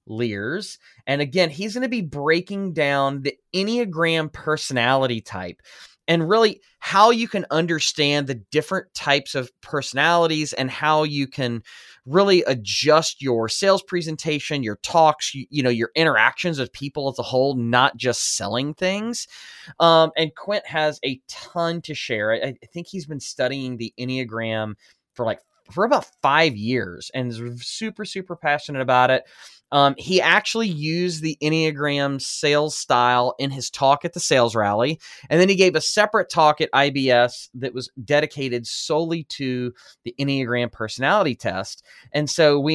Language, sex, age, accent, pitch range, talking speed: English, male, 20-39, American, 125-160 Hz, 160 wpm